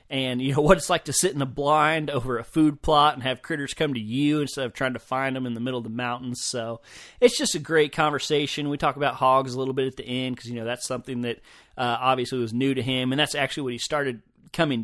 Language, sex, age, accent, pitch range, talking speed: English, male, 30-49, American, 120-140 Hz, 275 wpm